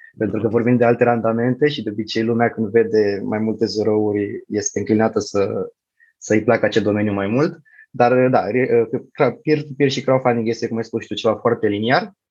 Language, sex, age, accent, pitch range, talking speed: Romanian, male, 20-39, native, 110-130 Hz, 180 wpm